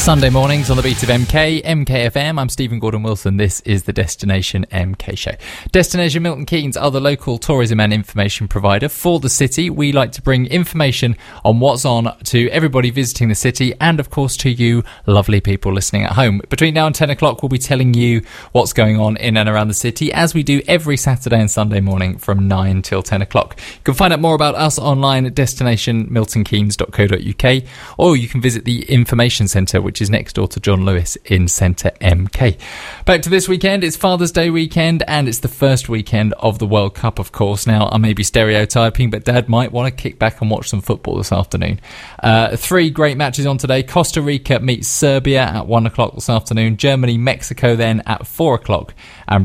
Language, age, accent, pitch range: English, 20-39, British, 105-140 Hz